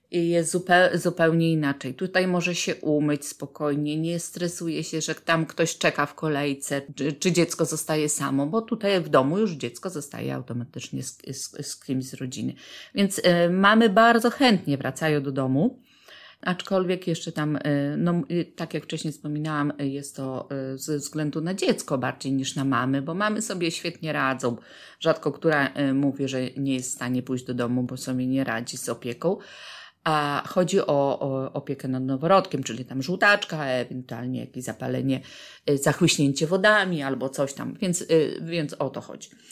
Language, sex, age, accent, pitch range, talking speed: Polish, female, 30-49, native, 140-180 Hz, 170 wpm